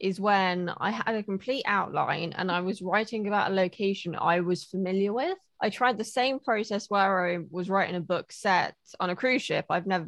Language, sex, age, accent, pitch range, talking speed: English, female, 20-39, British, 180-210 Hz, 215 wpm